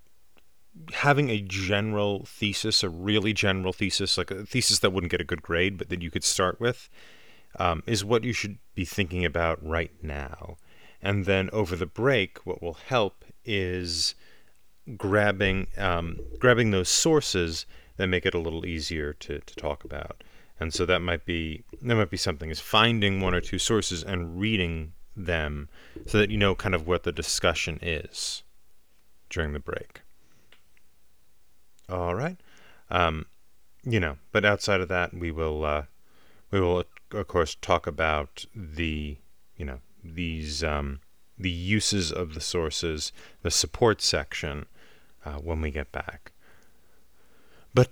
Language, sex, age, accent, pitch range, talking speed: English, male, 30-49, American, 80-110 Hz, 155 wpm